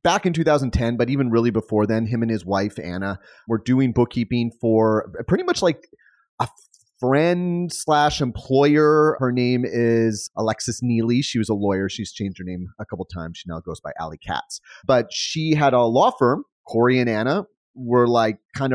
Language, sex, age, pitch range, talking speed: English, male, 30-49, 110-135 Hz, 190 wpm